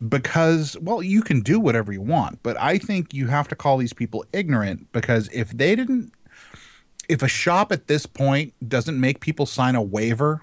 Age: 30-49